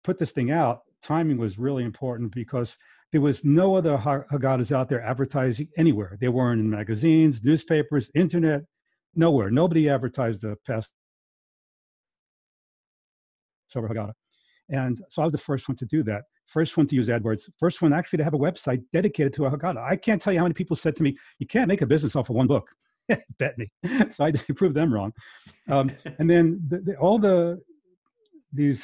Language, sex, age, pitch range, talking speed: English, male, 40-59, 125-160 Hz, 185 wpm